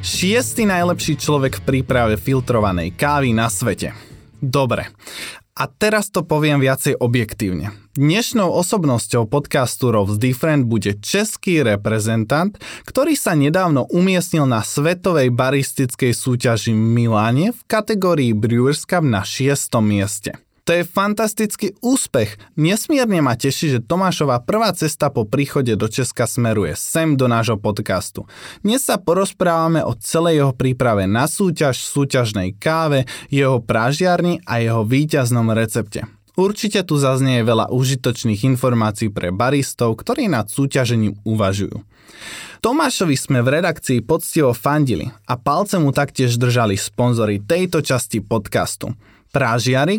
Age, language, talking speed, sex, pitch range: 20-39, Slovak, 125 wpm, male, 115-165 Hz